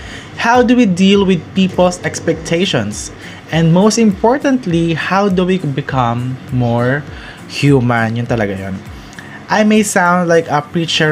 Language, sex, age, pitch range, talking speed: Filipino, male, 20-39, 130-170 Hz, 135 wpm